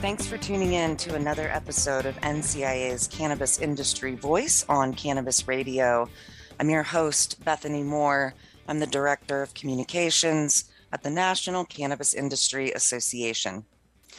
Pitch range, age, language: 130-155 Hz, 30-49, English